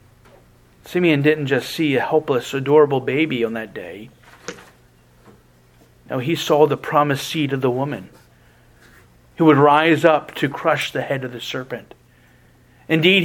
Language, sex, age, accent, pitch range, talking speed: English, male, 40-59, American, 140-190 Hz, 145 wpm